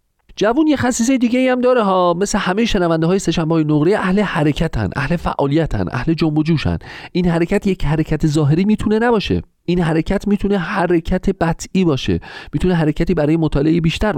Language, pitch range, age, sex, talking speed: Persian, 110-170 Hz, 40-59, male, 160 wpm